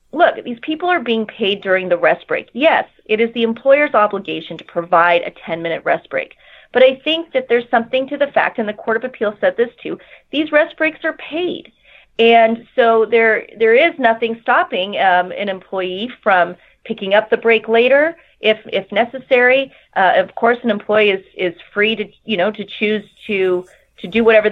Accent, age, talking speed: American, 30-49, 195 wpm